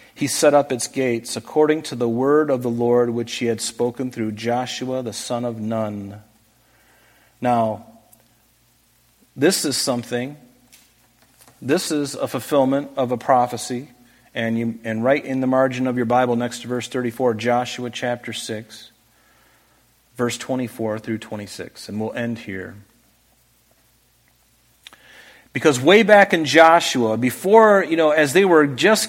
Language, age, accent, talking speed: English, 40-59, American, 145 wpm